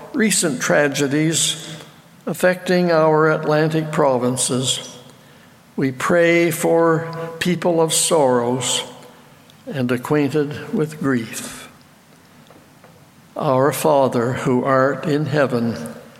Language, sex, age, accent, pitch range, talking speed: English, male, 60-79, American, 130-165 Hz, 80 wpm